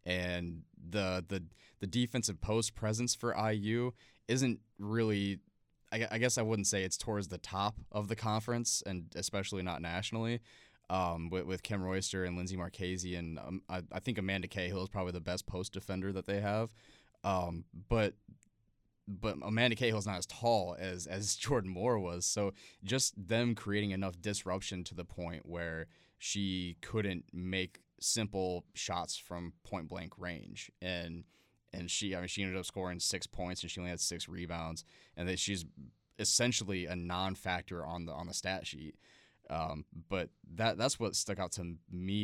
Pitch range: 90-105 Hz